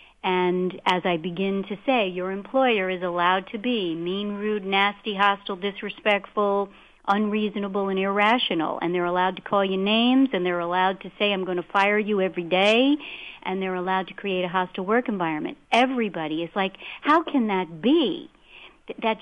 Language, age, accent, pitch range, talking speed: English, 50-69, American, 190-250 Hz, 175 wpm